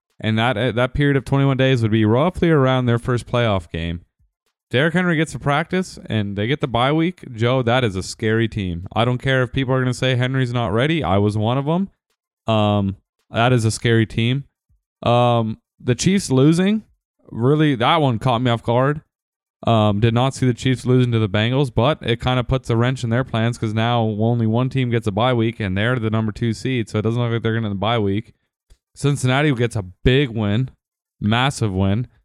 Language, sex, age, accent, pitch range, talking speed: English, male, 20-39, American, 110-135 Hz, 225 wpm